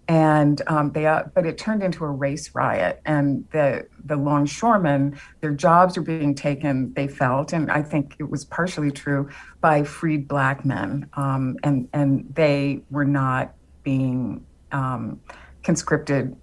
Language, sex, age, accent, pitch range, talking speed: English, female, 50-69, American, 135-155 Hz, 155 wpm